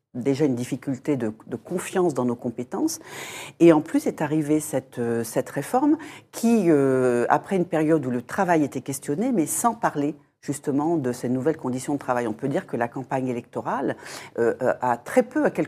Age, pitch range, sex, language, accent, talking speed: 40-59, 120-165 Hz, female, French, French, 190 wpm